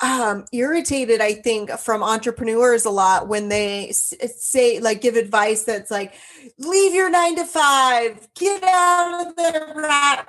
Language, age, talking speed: English, 30-49, 150 wpm